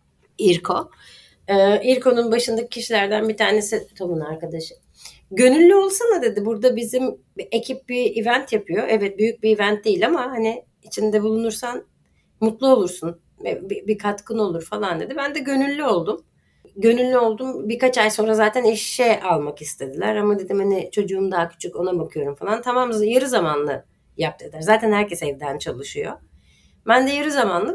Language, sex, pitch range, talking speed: Turkish, female, 180-235 Hz, 150 wpm